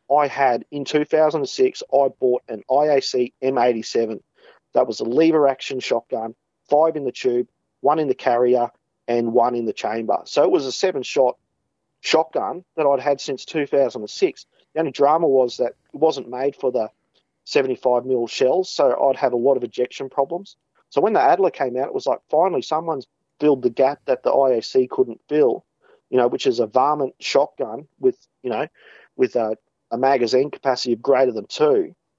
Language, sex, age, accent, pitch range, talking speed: English, male, 40-59, Australian, 125-165 Hz, 180 wpm